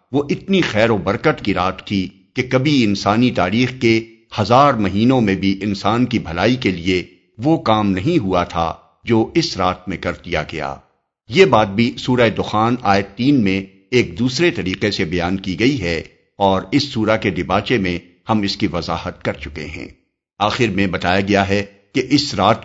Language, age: Urdu, 50-69